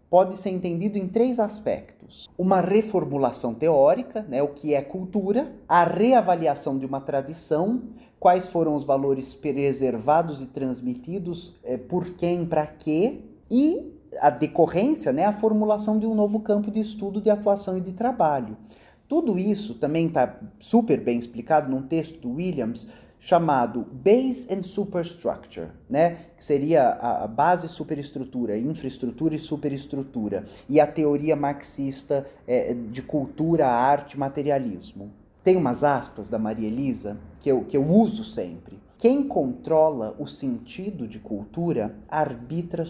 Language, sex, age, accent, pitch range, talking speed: Portuguese, male, 30-49, Brazilian, 135-190 Hz, 140 wpm